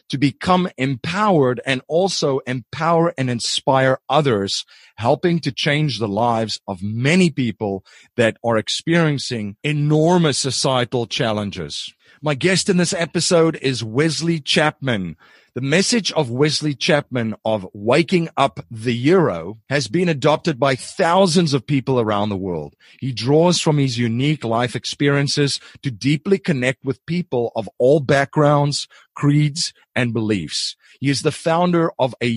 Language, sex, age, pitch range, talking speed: English, male, 40-59, 120-160 Hz, 140 wpm